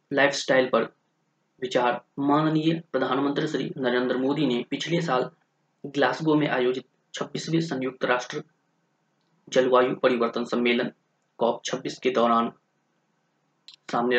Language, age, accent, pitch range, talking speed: Hindi, 30-49, native, 125-160 Hz, 95 wpm